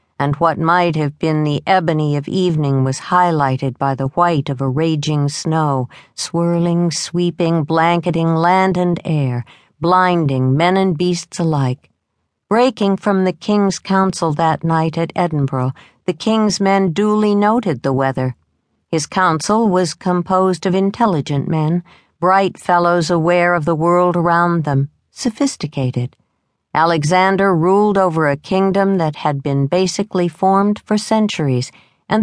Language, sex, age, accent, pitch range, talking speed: English, female, 50-69, American, 145-195 Hz, 140 wpm